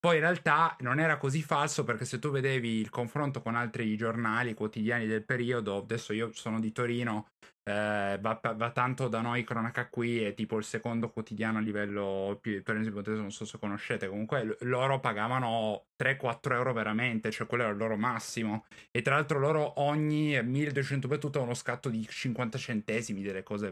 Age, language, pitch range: 10-29, Italian, 110-145 Hz